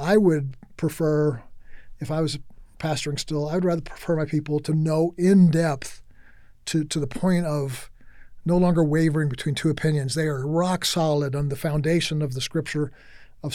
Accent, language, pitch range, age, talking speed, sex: American, English, 145-165 Hz, 50-69, 175 wpm, male